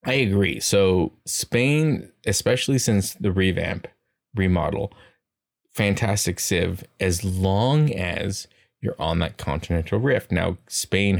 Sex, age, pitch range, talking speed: male, 20-39, 90-100 Hz, 115 wpm